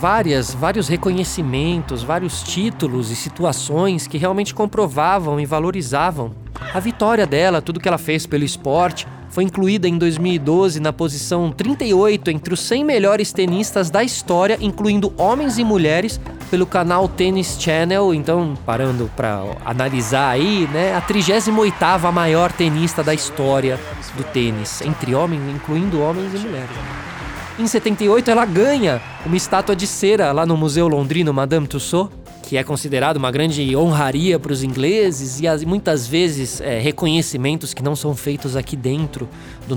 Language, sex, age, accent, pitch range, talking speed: Portuguese, male, 20-39, Brazilian, 140-185 Hz, 150 wpm